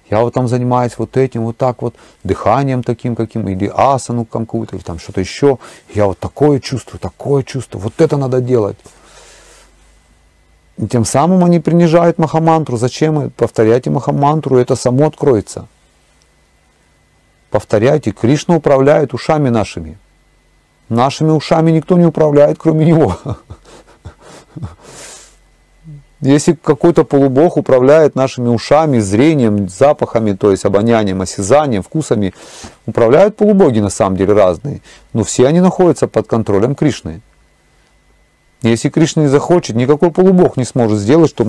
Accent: native